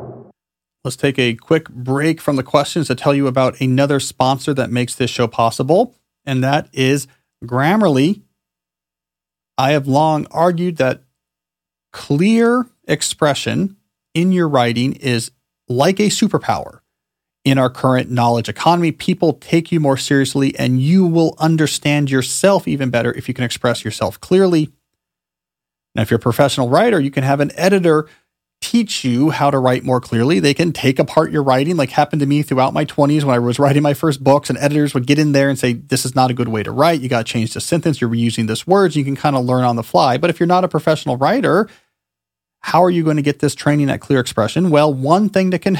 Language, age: English, 40-59